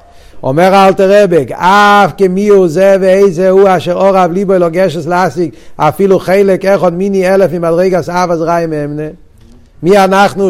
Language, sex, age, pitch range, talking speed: Hebrew, male, 60-79, 165-215 Hz, 150 wpm